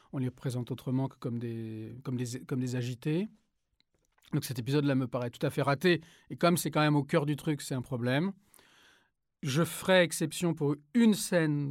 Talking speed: 200 wpm